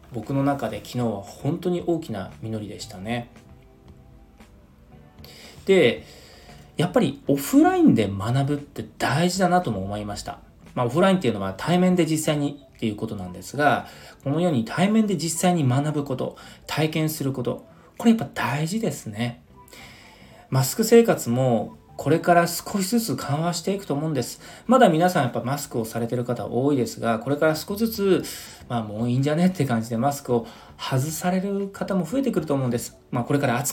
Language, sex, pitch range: Japanese, male, 115-180 Hz